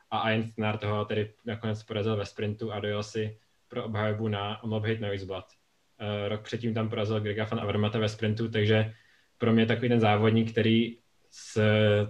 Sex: male